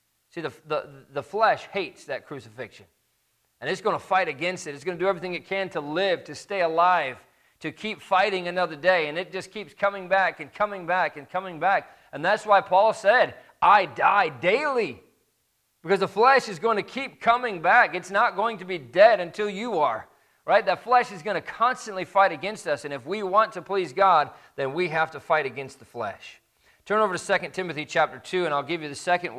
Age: 40-59